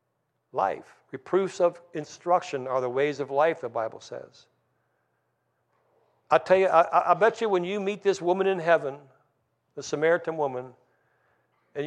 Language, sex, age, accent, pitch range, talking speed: English, male, 60-79, American, 135-170 Hz, 150 wpm